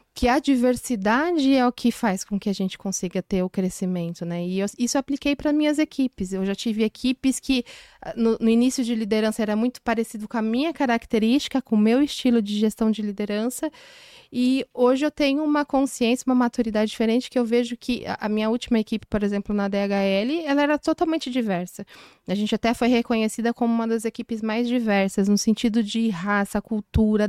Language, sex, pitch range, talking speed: Portuguese, female, 210-245 Hz, 200 wpm